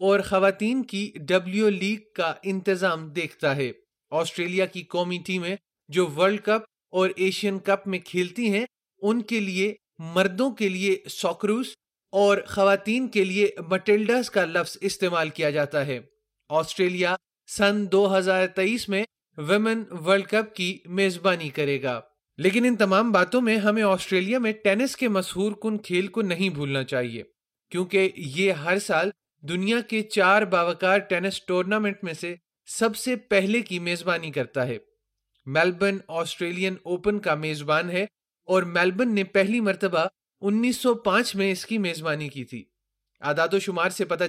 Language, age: Urdu, 30-49